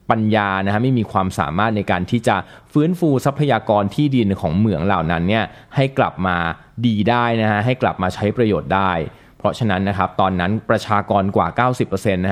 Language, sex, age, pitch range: Thai, male, 20-39, 95-120 Hz